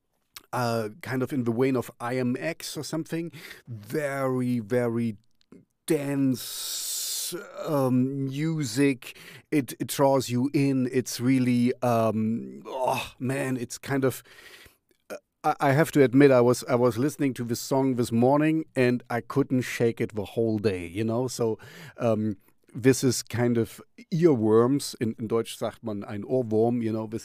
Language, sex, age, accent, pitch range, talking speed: English, male, 40-59, German, 110-135 Hz, 155 wpm